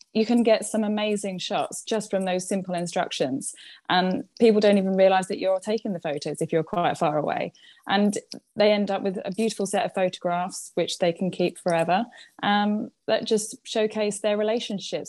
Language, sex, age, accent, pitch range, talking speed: English, female, 20-39, British, 175-210 Hz, 185 wpm